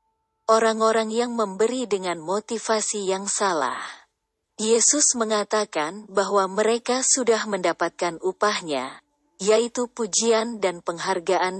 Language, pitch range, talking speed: Indonesian, 185-240 Hz, 95 wpm